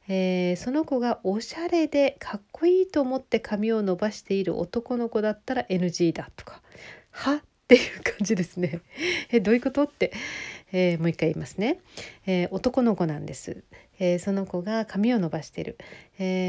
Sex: female